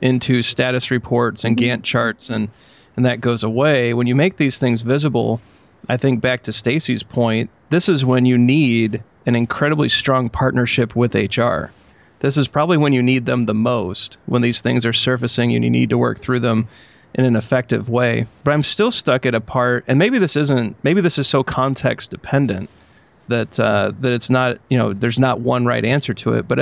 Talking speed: 205 wpm